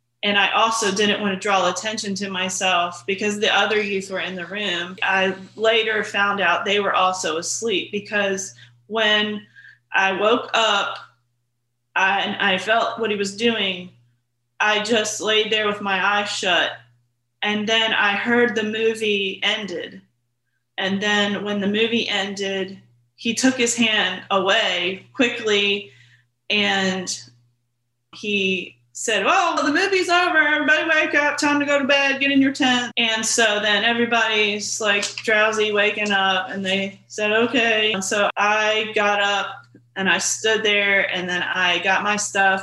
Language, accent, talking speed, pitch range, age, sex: English, American, 155 wpm, 180-220 Hz, 30-49, female